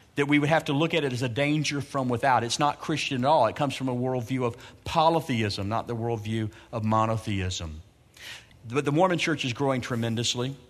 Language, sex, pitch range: English, male, 115-150 Hz